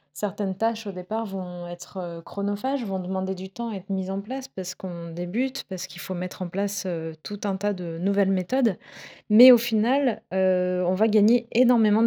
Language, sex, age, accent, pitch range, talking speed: French, female, 30-49, French, 190-225 Hz, 200 wpm